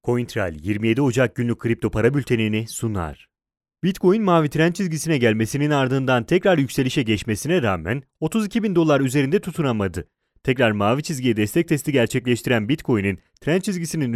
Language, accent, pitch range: Italian, Turkish, 115-165 Hz